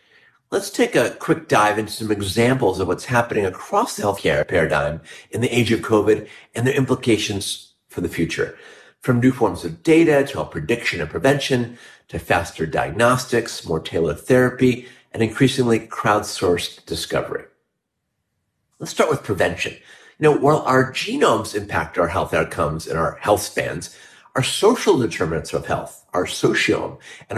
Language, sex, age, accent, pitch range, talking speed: English, male, 50-69, American, 110-145 Hz, 155 wpm